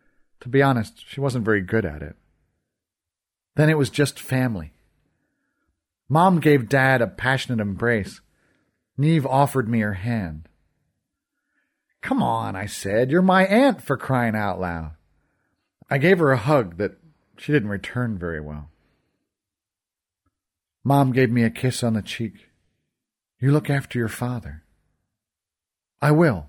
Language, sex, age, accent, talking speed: English, male, 40-59, American, 140 wpm